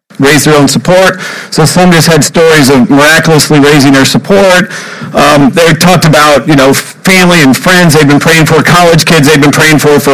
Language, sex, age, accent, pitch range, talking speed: English, male, 50-69, American, 150-185 Hz, 200 wpm